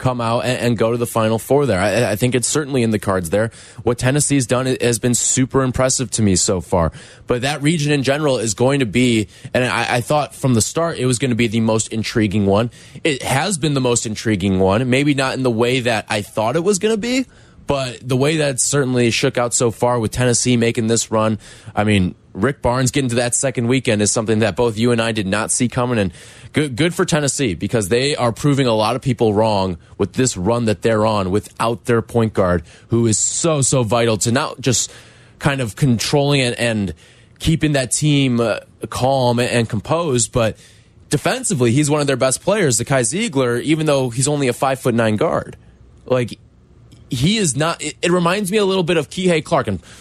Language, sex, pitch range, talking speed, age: English, male, 115-135 Hz, 225 wpm, 20-39